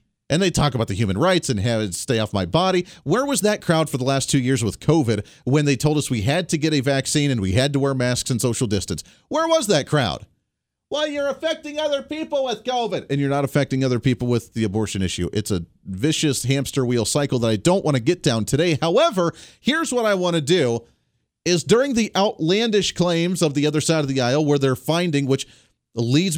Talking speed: 235 wpm